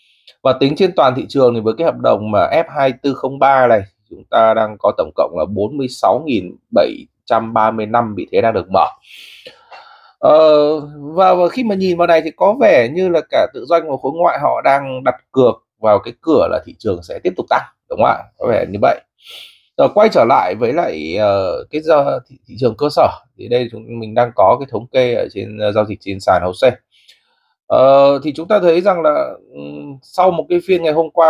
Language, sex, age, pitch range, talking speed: Vietnamese, male, 20-39, 125-190 Hz, 215 wpm